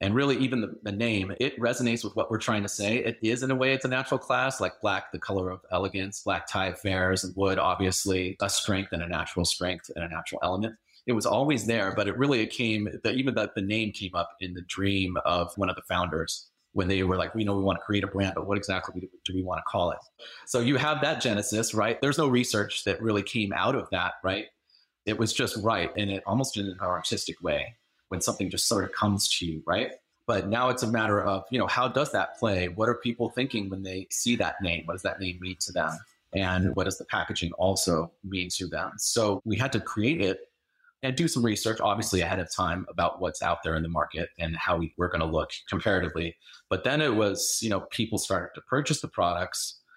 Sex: male